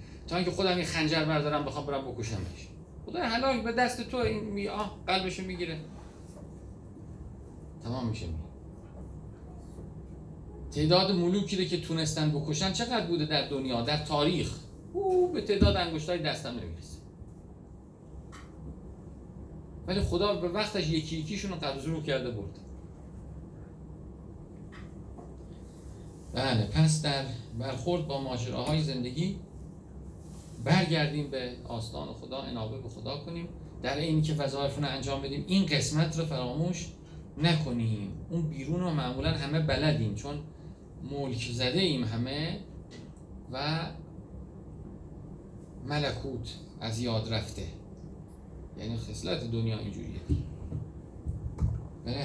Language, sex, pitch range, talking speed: Persian, male, 115-165 Hz, 115 wpm